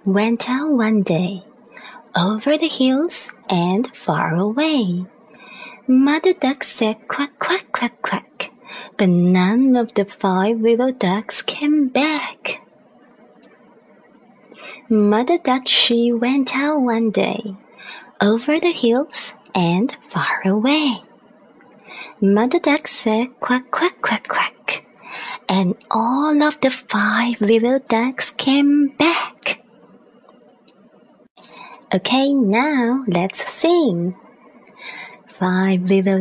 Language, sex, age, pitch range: Chinese, female, 30-49, 195-260 Hz